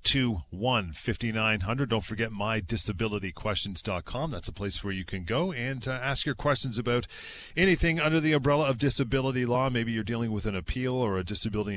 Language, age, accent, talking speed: English, 40-59, American, 175 wpm